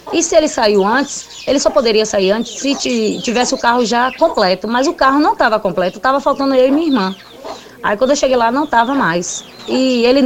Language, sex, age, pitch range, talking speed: Portuguese, female, 20-39, 200-260 Hz, 220 wpm